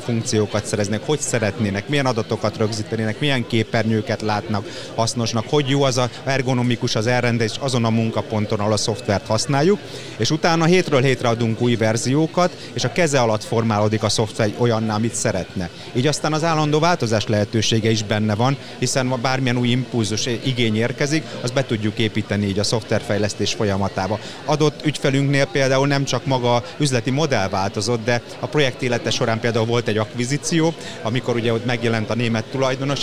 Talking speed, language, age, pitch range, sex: 160 wpm, Hungarian, 30-49, 110-135 Hz, male